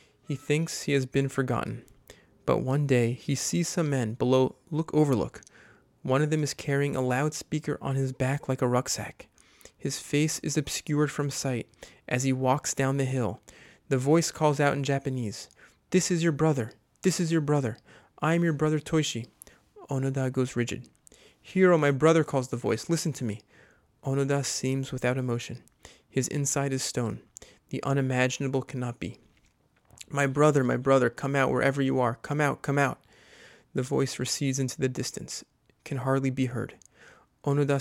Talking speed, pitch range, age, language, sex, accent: 170 wpm, 130-145 Hz, 30-49, English, male, American